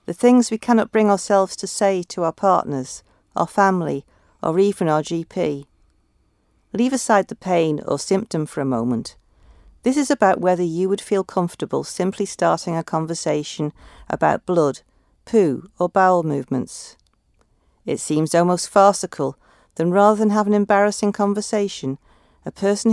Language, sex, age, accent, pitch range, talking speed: English, female, 50-69, British, 145-205 Hz, 150 wpm